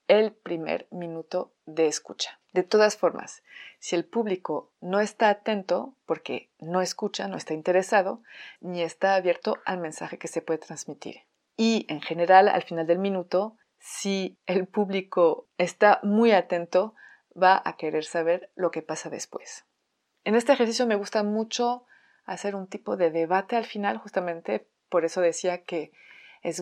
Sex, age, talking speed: female, 30-49, 155 wpm